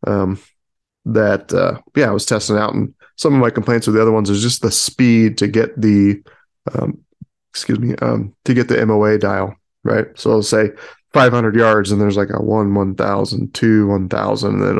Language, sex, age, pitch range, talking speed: English, male, 20-39, 100-120 Hz, 195 wpm